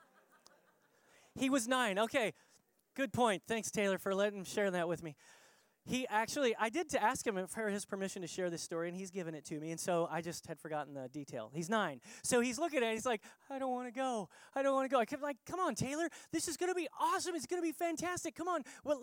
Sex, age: male, 20-39